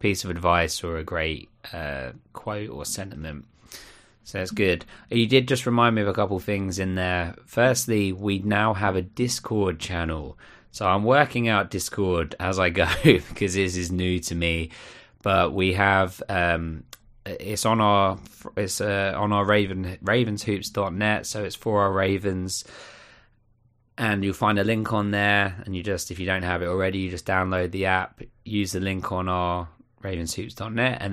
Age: 20-39